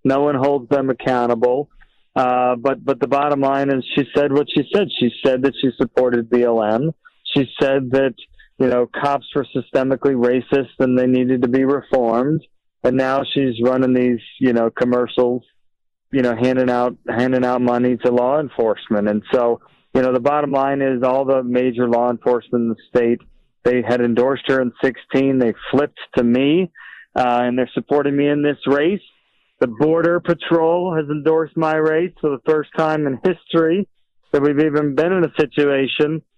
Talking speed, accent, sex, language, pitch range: 180 wpm, American, male, English, 120-145 Hz